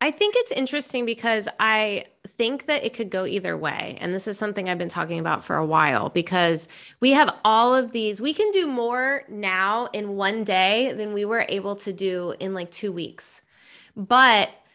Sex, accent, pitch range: female, American, 180-230 Hz